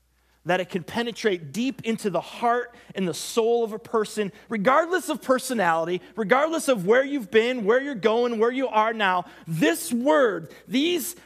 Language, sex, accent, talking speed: English, male, American, 170 wpm